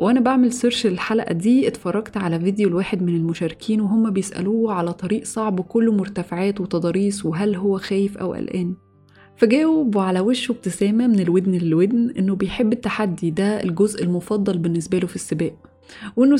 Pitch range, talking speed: 185-235 Hz, 150 wpm